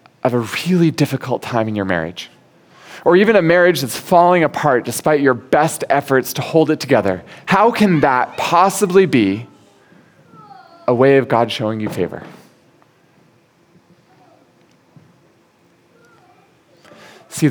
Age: 20-39